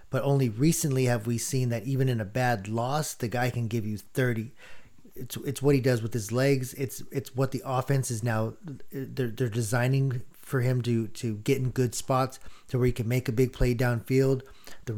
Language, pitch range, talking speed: English, 115-135 Hz, 215 wpm